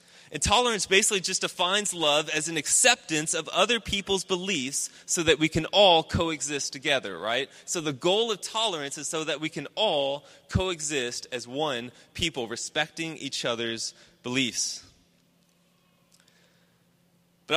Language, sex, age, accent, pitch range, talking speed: English, male, 20-39, American, 140-195 Hz, 140 wpm